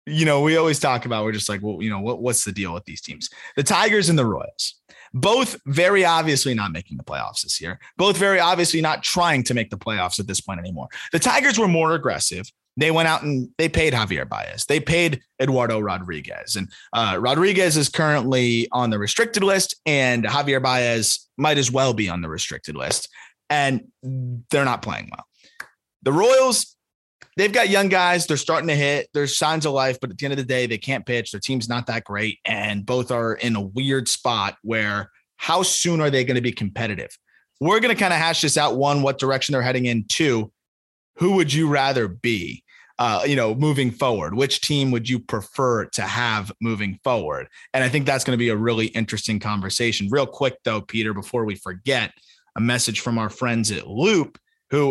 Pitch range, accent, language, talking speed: 110-150 Hz, American, English, 210 wpm